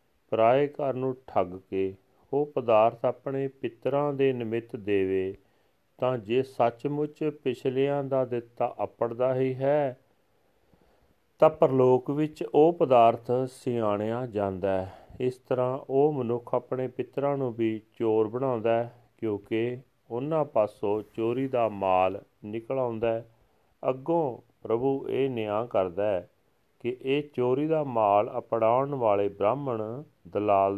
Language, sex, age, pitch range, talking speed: Punjabi, male, 40-59, 110-135 Hz, 105 wpm